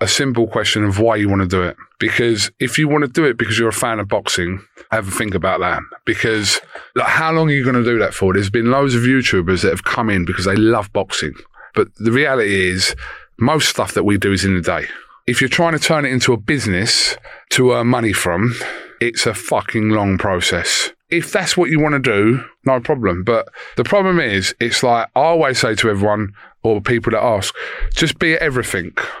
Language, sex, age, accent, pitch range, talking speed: English, male, 30-49, British, 105-150 Hz, 225 wpm